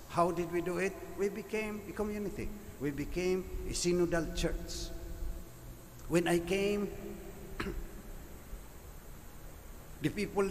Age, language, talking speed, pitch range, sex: 50-69, English, 110 wpm, 115-170 Hz, male